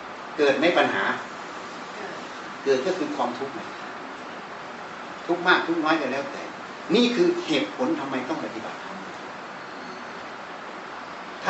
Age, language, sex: 60-79, Thai, male